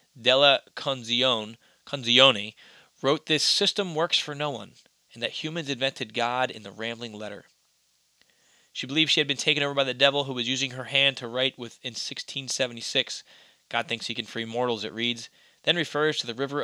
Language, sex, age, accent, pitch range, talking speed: English, male, 20-39, American, 120-140 Hz, 190 wpm